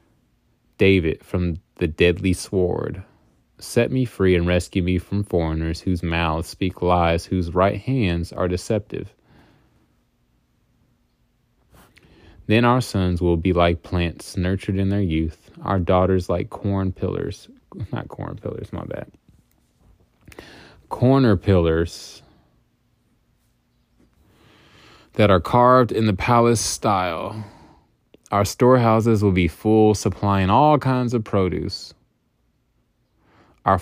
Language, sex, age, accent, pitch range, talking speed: English, male, 20-39, American, 85-105 Hz, 110 wpm